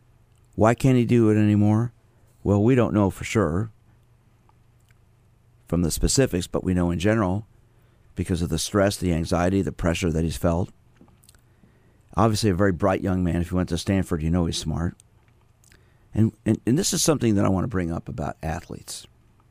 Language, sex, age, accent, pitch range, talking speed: English, male, 50-69, American, 90-115 Hz, 185 wpm